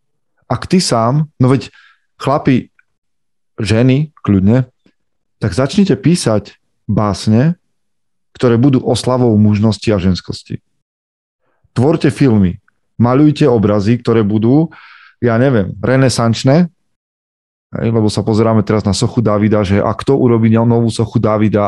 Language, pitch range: Slovak, 100-120 Hz